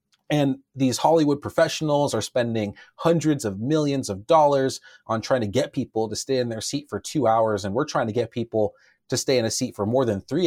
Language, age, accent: English, 30-49, American